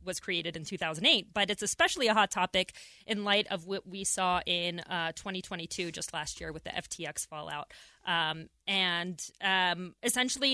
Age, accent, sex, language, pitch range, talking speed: 20-39, American, female, English, 180-220 Hz, 170 wpm